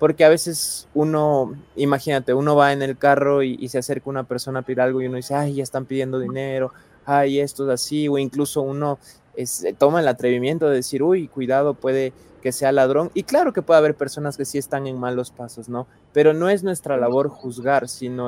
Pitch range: 125-145 Hz